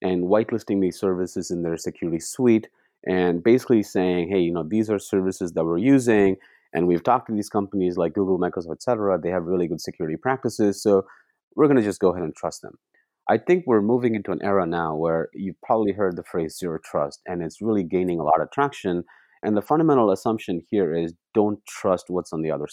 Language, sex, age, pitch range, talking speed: English, male, 30-49, 90-110 Hz, 215 wpm